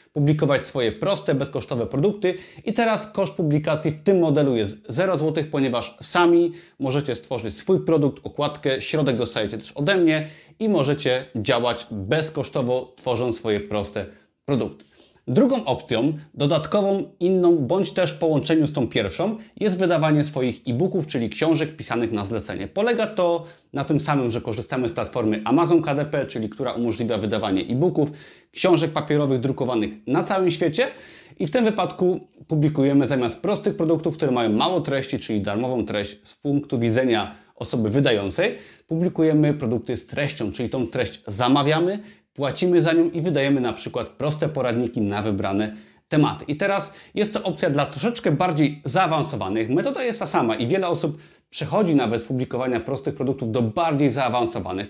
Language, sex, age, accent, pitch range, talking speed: Polish, male, 30-49, native, 125-170 Hz, 155 wpm